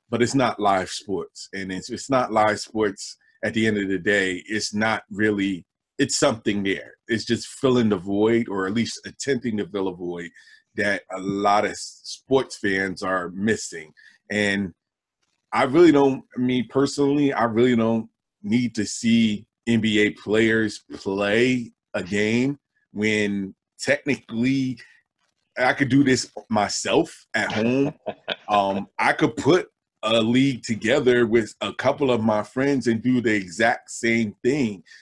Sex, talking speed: male, 155 wpm